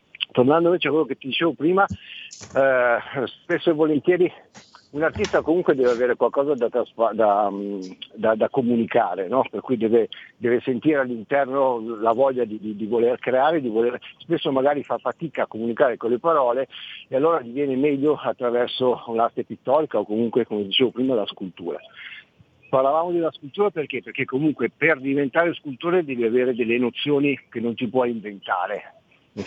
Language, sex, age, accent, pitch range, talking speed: Italian, male, 50-69, native, 115-155 Hz, 170 wpm